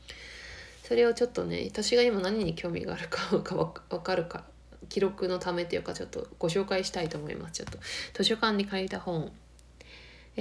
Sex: female